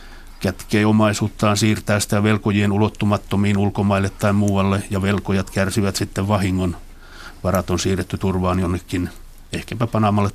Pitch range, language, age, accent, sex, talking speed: 95-105 Hz, Finnish, 60-79, native, male, 120 wpm